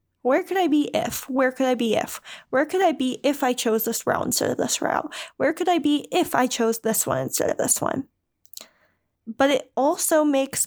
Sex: female